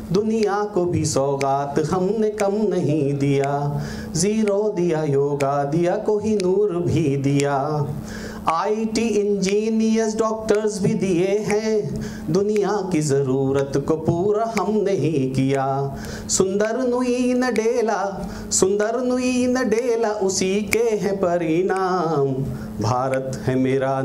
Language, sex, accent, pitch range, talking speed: Hindi, male, native, 135-200 Hz, 110 wpm